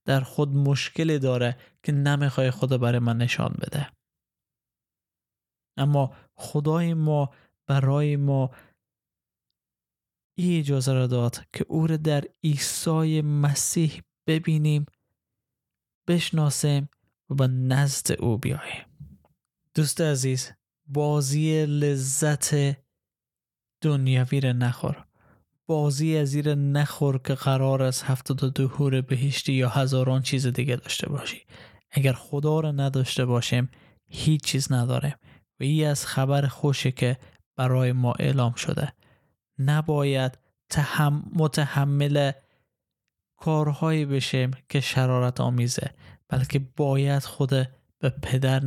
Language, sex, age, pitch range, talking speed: Persian, male, 20-39, 130-145 Hz, 110 wpm